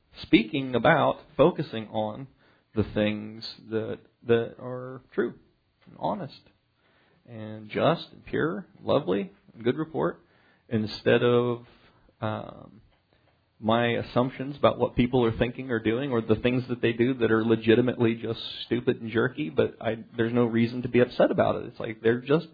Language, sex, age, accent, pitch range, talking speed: English, male, 40-59, American, 110-130 Hz, 155 wpm